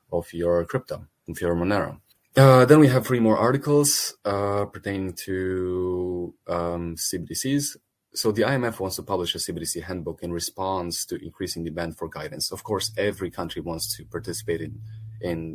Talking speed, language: 165 wpm, English